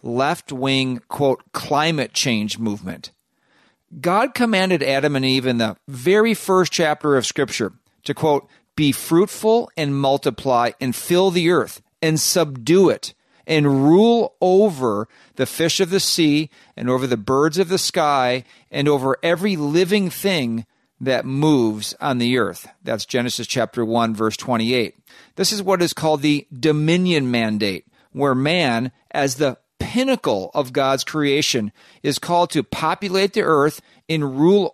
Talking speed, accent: 145 wpm, American